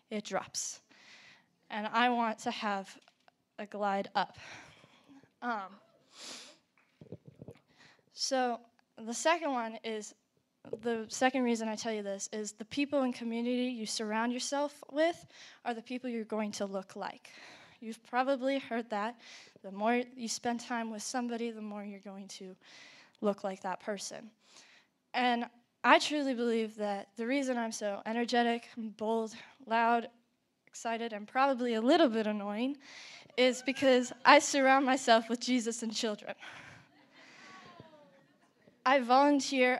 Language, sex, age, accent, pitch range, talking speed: English, female, 10-29, American, 220-265 Hz, 135 wpm